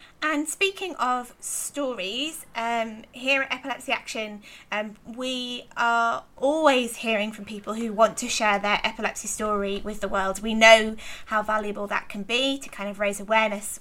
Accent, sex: British, female